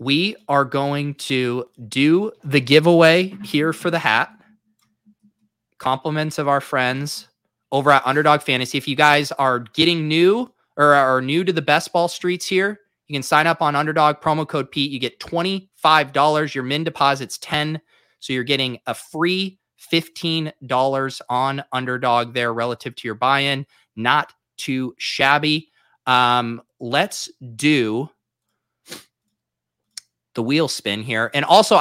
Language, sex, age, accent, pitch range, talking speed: English, male, 20-39, American, 125-155 Hz, 140 wpm